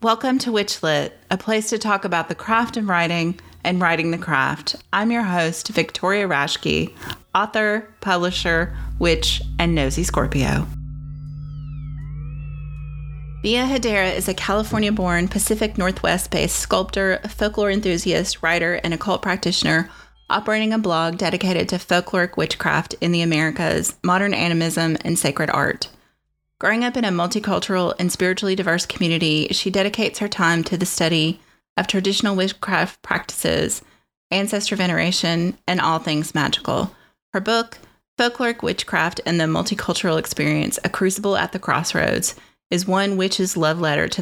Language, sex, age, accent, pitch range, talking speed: English, female, 30-49, American, 160-200 Hz, 135 wpm